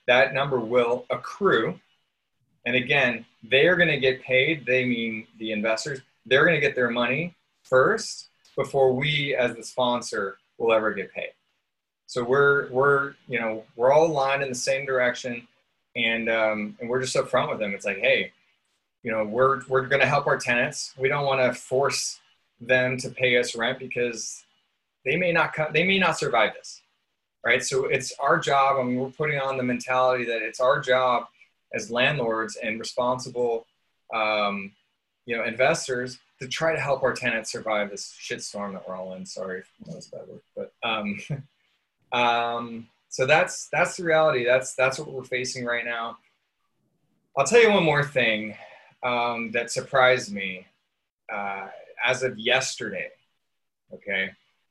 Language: English